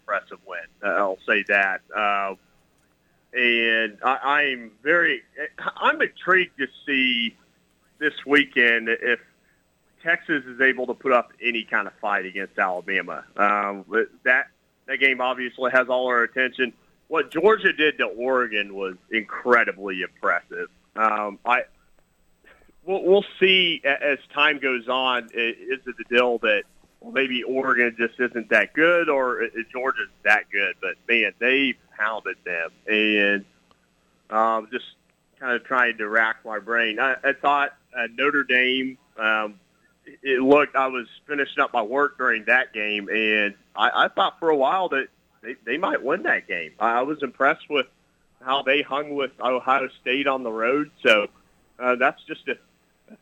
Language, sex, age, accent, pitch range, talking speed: English, male, 40-59, American, 115-135 Hz, 155 wpm